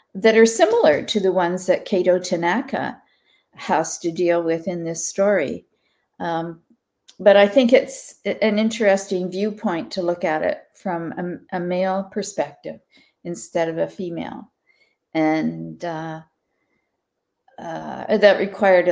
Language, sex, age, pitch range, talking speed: English, female, 50-69, 165-195 Hz, 135 wpm